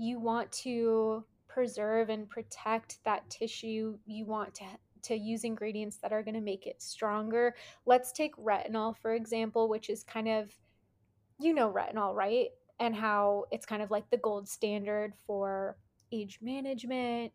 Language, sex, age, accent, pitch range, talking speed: English, female, 20-39, American, 215-250 Hz, 160 wpm